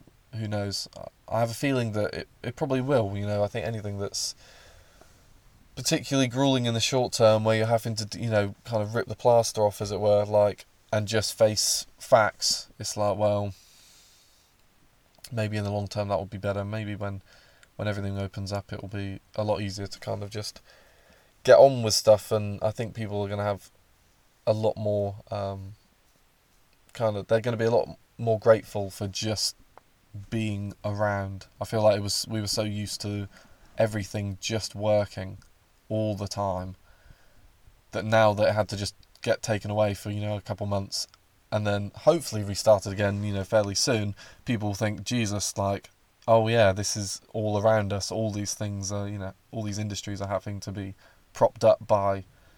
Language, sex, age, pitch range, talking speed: English, male, 20-39, 100-110 Hz, 195 wpm